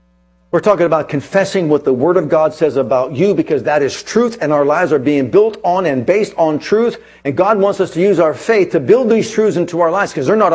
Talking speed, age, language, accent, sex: 255 wpm, 50-69, English, American, male